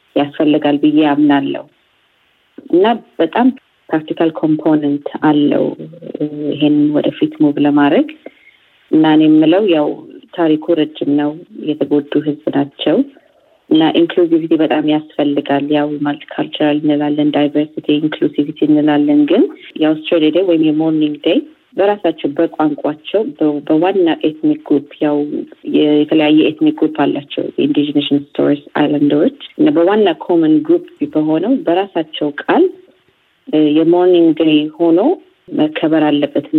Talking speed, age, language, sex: 110 wpm, 30-49, Amharic, female